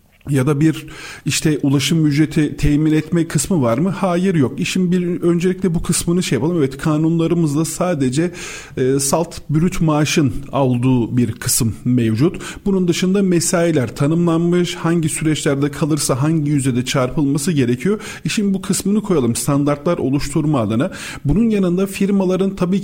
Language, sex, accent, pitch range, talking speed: Turkish, male, native, 145-180 Hz, 140 wpm